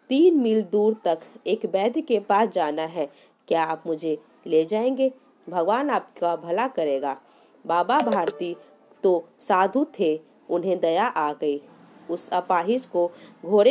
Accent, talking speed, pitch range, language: native, 135 wpm, 165-235 Hz, Hindi